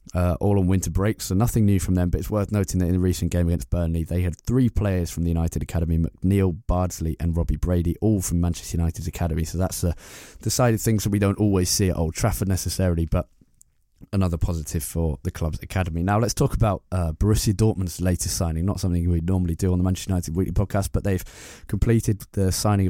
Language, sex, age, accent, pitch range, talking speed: English, male, 20-39, British, 85-100 Hz, 230 wpm